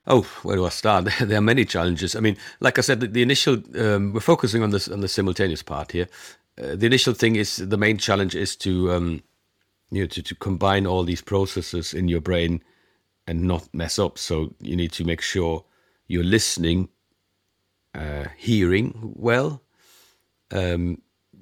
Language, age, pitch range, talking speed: English, 50-69, 85-100 Hz, 180 wpm